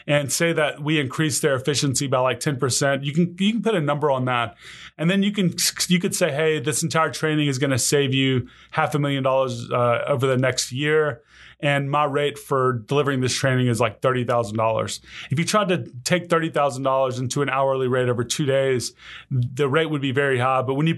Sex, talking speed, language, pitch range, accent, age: male, 215 wpm, English, 130-155 Hz, American, 20-39